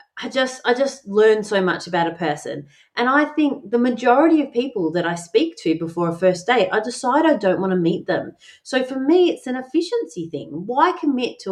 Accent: Australian